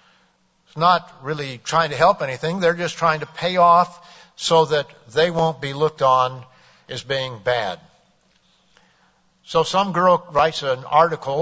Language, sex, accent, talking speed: English, male, American, 145 wpm